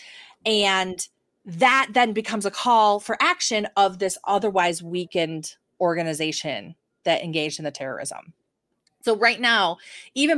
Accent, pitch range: American, 180-240 Hz